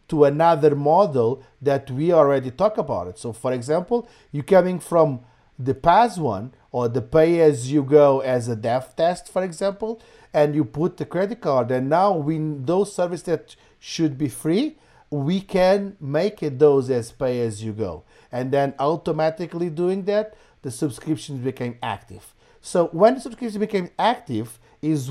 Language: English